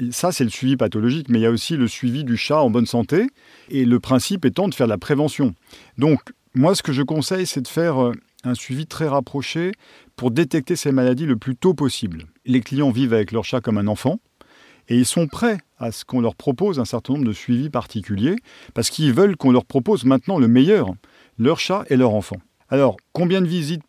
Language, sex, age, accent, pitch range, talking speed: English, male, 50-69, French, 115-145 Hz, 225 wpm